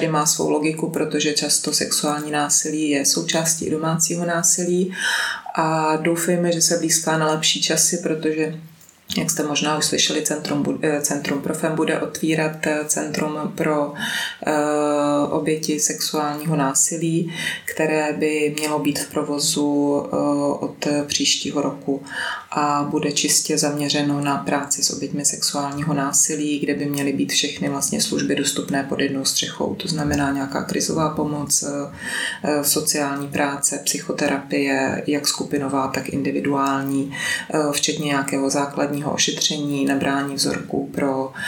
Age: 20-39